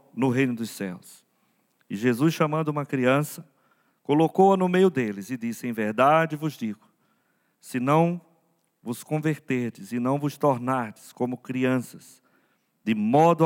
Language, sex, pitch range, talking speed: Portuguese, male, 120-175 Hz, 140 wpm